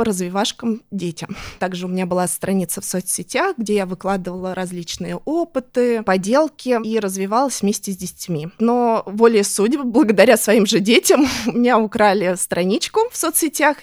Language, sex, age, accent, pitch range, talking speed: Russian, female, 20-39, native, 190-240 Hz, 140 wpm